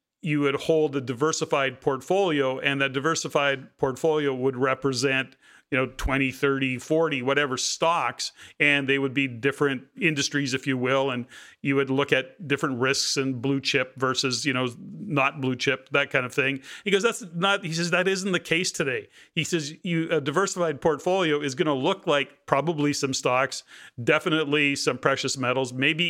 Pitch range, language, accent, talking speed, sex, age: 130-155 Hz, English, American, 180 wpm, male, 40-59